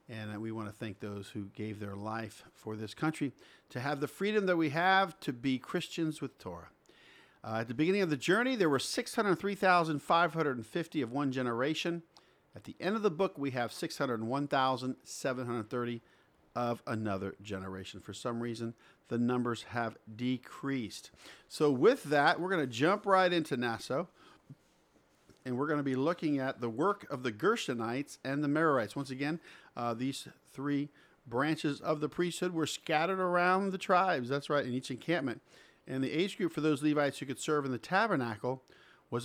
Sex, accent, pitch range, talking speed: male, American, 120-155 Hz, 175 wpm